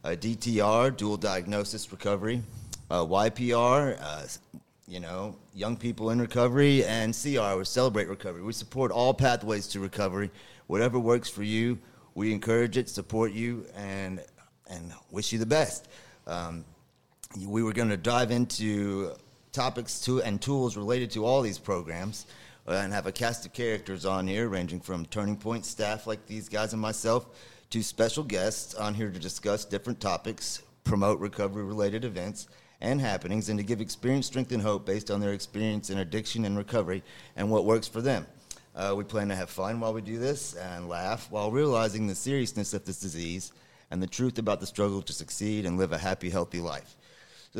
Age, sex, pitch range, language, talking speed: 30-49, male, 100-120 Hz, English, 180 wpm